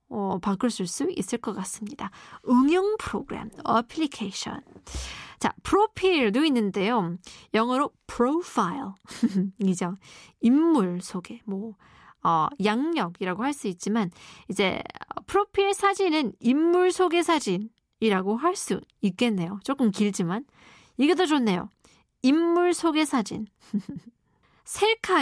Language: Korean